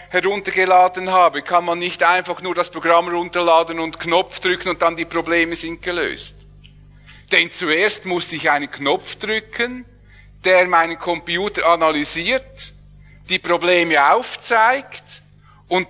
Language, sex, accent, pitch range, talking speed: English, male, Austrian, 165-215 Hz, 130 wpm